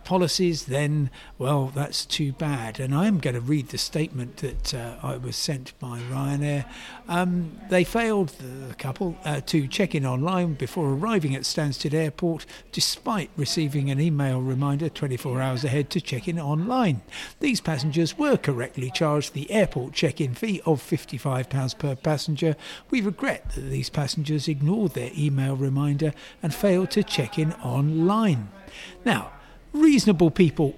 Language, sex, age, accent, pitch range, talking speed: English, male, 60-79, British, 135-175 Hz, 150 wpm